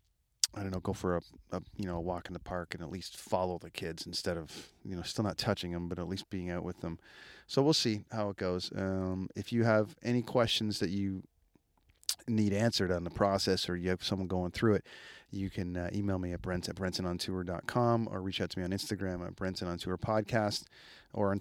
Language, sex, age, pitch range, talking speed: English, male, 30-49, 95-110 Hz, 230 wpm